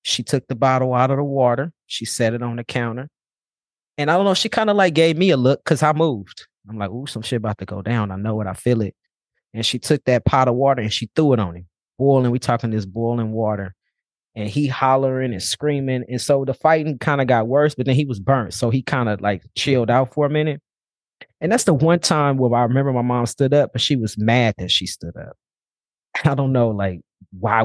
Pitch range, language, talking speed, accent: 110-135 Hz, English, 250 wpm, American